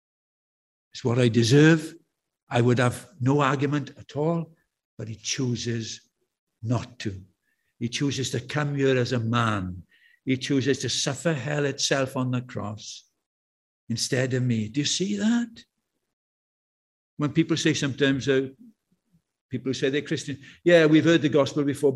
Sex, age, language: male, 60-79, English